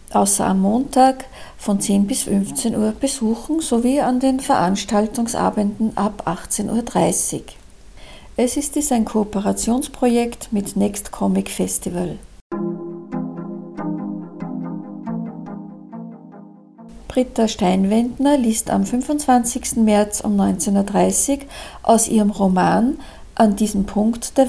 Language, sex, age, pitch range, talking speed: German, female, 50-69, 195-240 Hz, 100 wpm